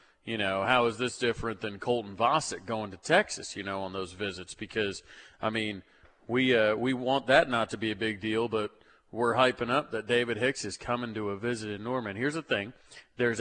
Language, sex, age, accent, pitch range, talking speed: English, male, 40-59, American, 110-130 Hz, 220 wpm